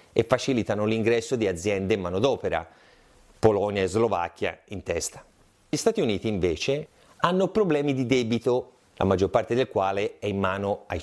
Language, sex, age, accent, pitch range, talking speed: Italian, male, 30-49, native, 100-145 Hz, 160 wpm